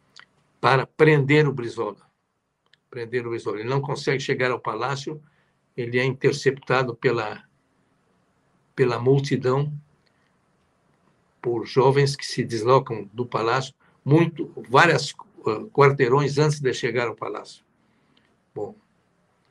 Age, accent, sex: 60-79, Brazilian, male